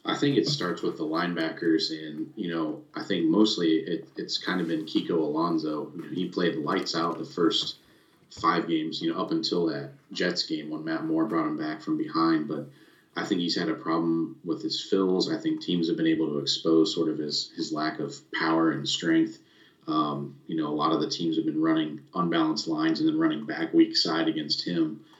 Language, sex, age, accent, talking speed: English, male, 30-49, American, 215 wpm